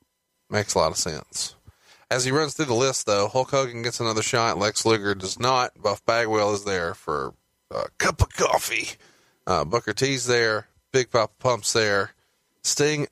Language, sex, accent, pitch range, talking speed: English, male, American, 105-135 Hz, 180 wpm